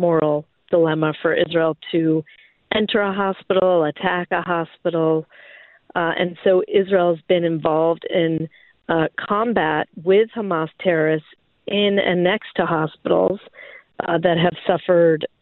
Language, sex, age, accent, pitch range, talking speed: English, female, 40-59, American, 165-190 Hz, 130 wpm